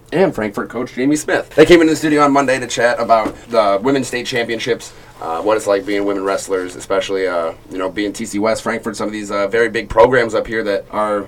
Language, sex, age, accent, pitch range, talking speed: English, male, 30-49, American, 100-115 Hz, 240 wpm